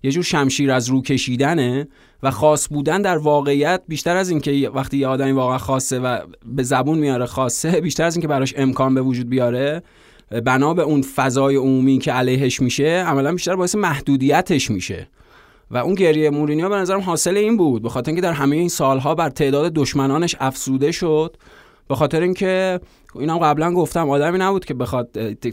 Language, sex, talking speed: Persian, male, 180 wpm